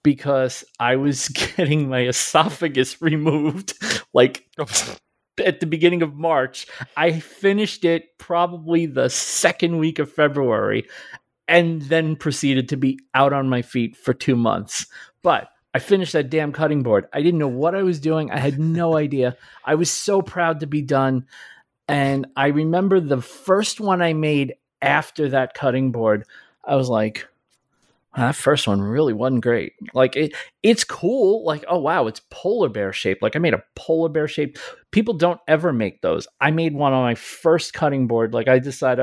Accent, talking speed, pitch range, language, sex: American, 175 wpm, 125-165 Hz, English, male